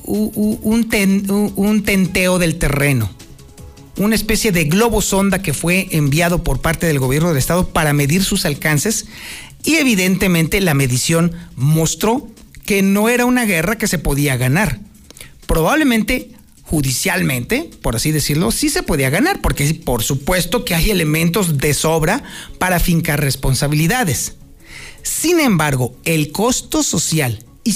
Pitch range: 150-205 Hz